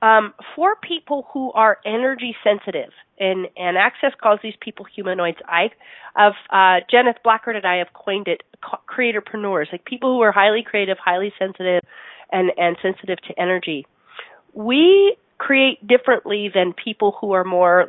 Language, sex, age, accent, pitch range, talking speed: English, female, 30-49, American, 180-245 Hz, 150 wpm